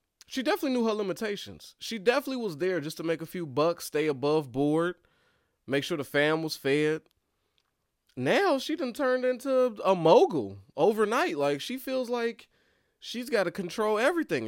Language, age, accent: English, 20-39, American